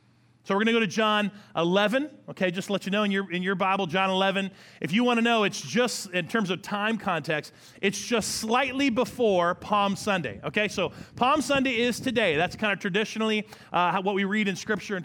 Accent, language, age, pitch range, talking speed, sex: American, English, 30-49, 175-235 Hz, 220 wpm, male